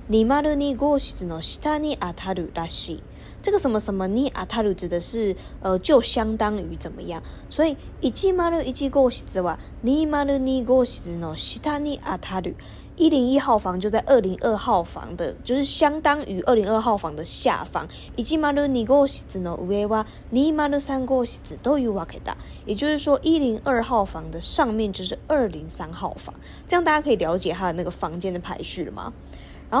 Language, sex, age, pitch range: Chinese, female, 20-39, 190-280 Hz